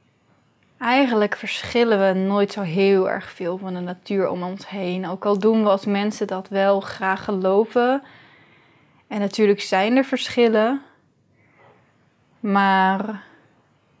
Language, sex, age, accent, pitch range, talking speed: Dutch, female, 20-39, Dutch, 195-235 Hz, 130 wpm